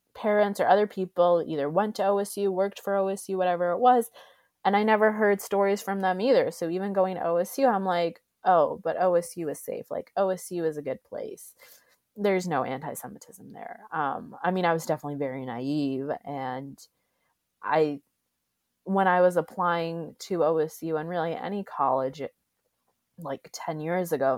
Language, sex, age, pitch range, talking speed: English, female, 20-39, 140-180 Hz, 165 wpm